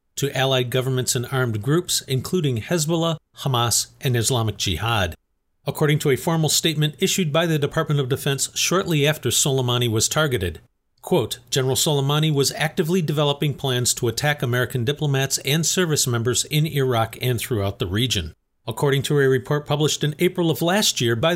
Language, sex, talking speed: English, male, 165 wpm